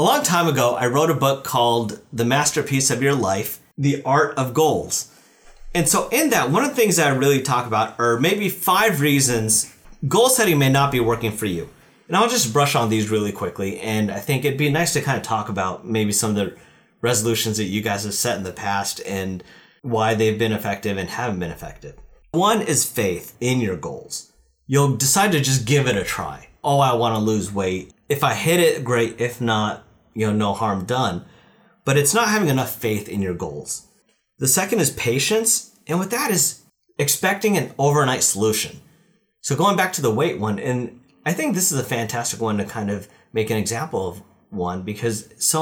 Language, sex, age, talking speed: English, male, 30-49, 215 wpm